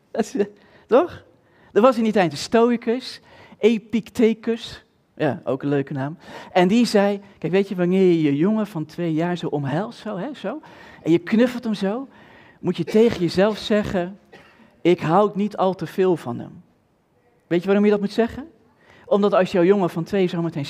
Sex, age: male, 40-59